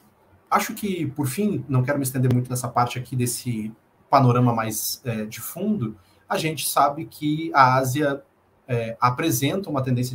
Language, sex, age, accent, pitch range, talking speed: Portuguese, male, 40-59, Brazilian, 120-140 Hz, 165 wpm